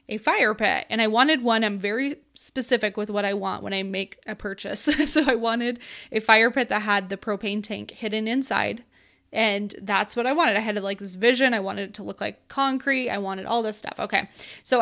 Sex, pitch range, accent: female, 205-245 Hz, American